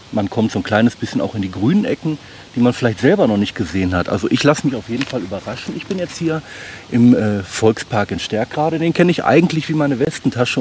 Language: German